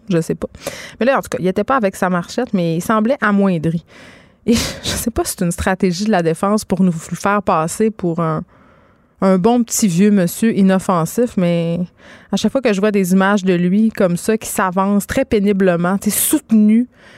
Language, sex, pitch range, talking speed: French, female, 185-235 Hz, 205 wpm